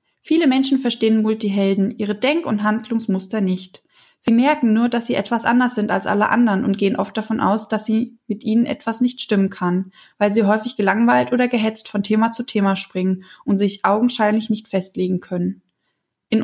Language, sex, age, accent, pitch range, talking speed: German, female, 20-39, German, 200-240 Hz, 185 wpm